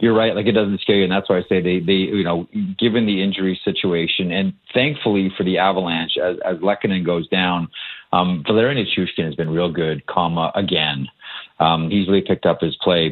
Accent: American